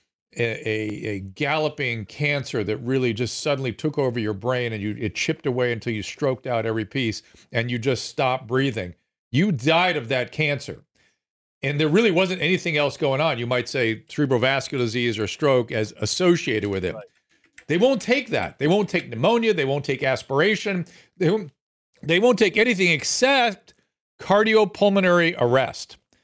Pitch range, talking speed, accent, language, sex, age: 130-195 Hz, 165 wpm, American, English, male, 50-69